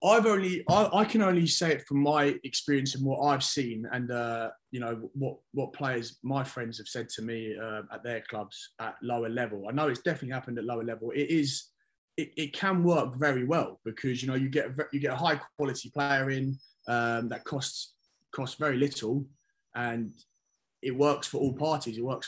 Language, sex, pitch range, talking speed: English, male, 120-145 Hz, 210 wpm